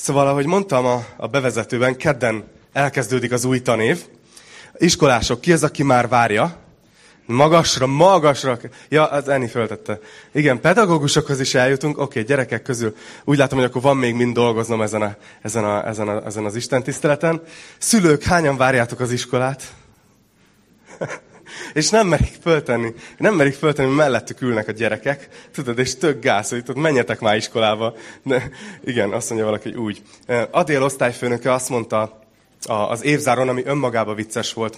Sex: male